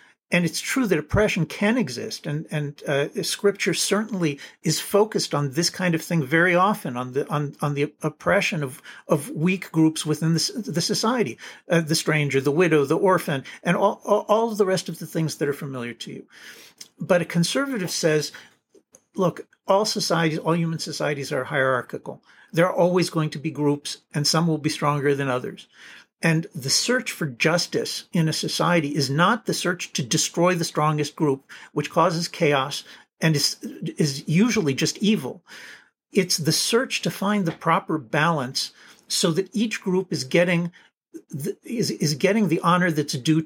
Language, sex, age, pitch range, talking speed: English, male, 50-69, 150-190 Hz, 180 wpm